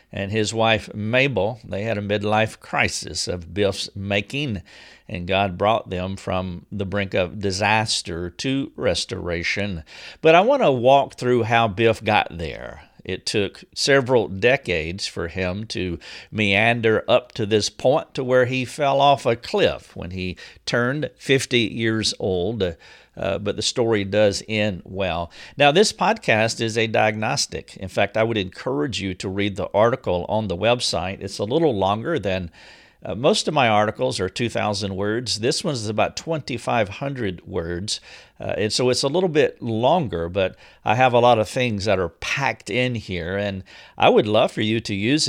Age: 50-69